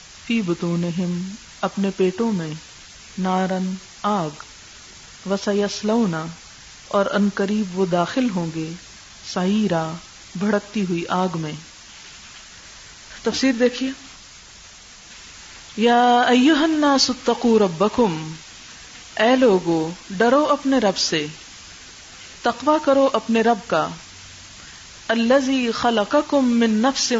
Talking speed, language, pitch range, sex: 85 wpm, Urdu, 180-235 Hz, female